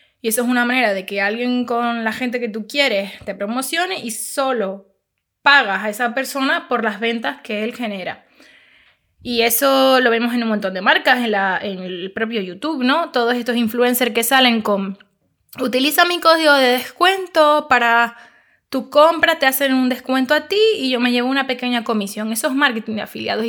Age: 20-39